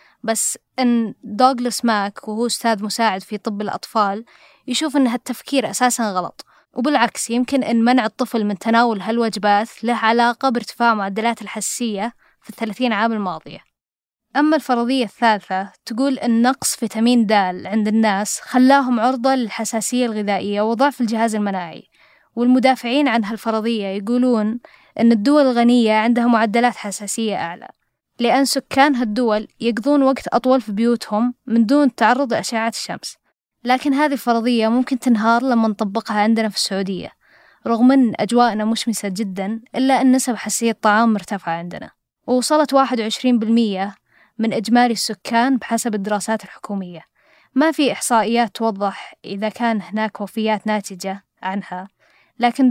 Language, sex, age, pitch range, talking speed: Arabic, female, 10-29, 215-250 Hz, 130 wpm